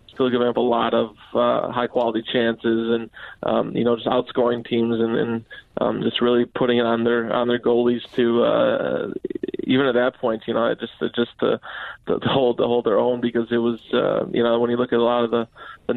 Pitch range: 120-125 Hz